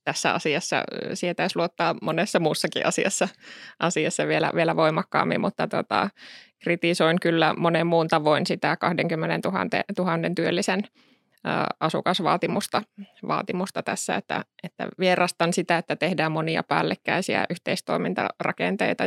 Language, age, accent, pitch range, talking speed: Finnish, 20-39, native, 165-190 Hz, 105 wpm